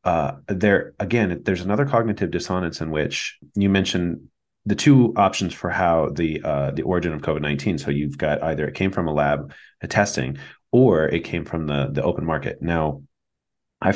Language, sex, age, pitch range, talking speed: English, male, 30-49, 75-100 Hz, 190 wpm